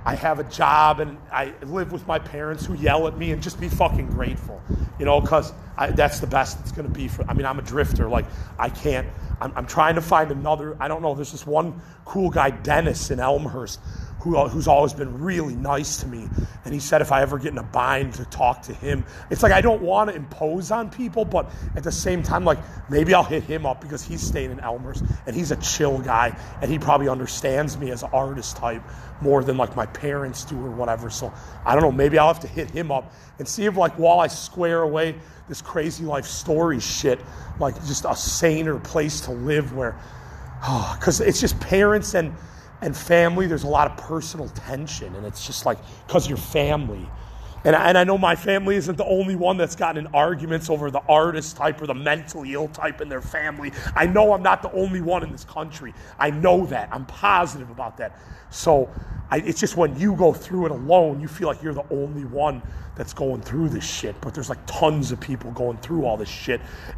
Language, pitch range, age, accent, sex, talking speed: English, 130-165 Hz, 30-49, American, male, 225 wpm